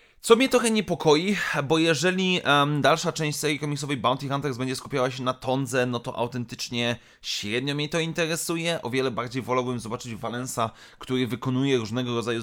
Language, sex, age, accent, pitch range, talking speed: Polish, male, 30-49, native, 120-150 Hz, 165 wpm